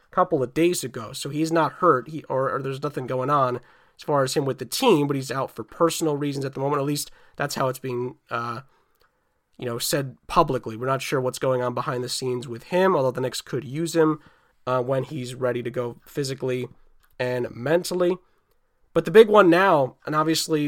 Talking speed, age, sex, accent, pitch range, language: 220 wpm, 20-39, male, American, 135-175 Hz, English